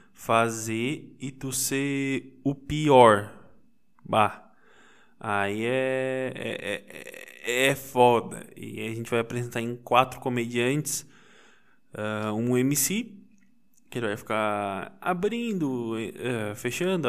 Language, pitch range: Portuguese, 110-150 Hz